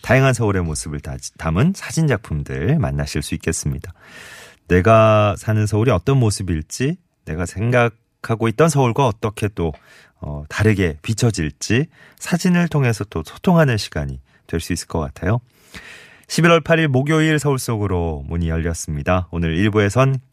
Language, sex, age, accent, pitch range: Korean, male, 40-59, native, 85-130 Hz